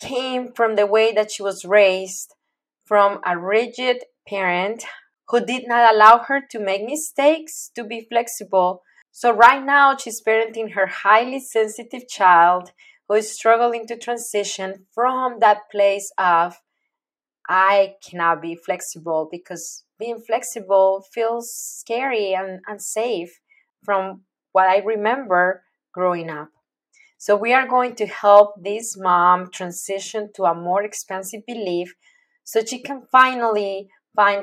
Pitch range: 185-235 Hz